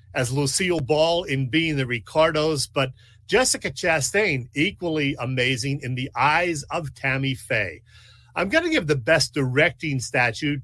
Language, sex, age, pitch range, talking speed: English, male, 40-59, 120-160 Hz, 145 wpm